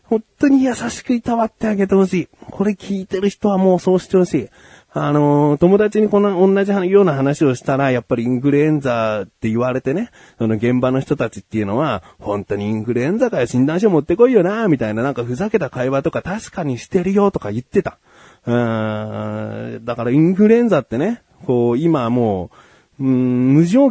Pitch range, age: 120-195 Hz, 30-49